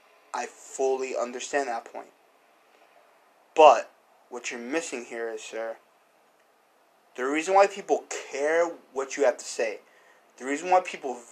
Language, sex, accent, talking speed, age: English, male, American, 140 wpm, 20-39